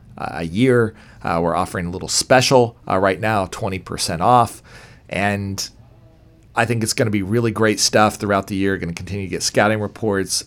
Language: English